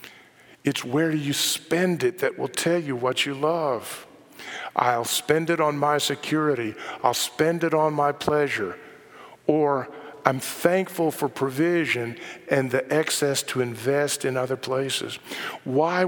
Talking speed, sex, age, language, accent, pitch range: 140 wpm, male, 50-69, English, American, 130-155 Hz